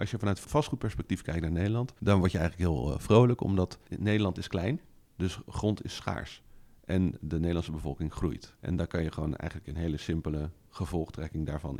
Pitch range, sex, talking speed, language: 80-95 Hz, male, 190 wpm, Dutch